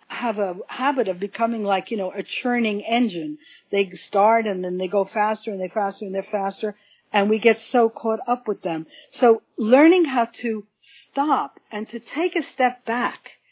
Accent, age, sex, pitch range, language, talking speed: American, 60-79, female, 195-245 Hz, English, 190 wpm